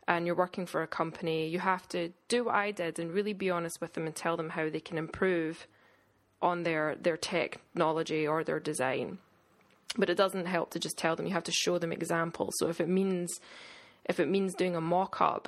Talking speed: 220 wpm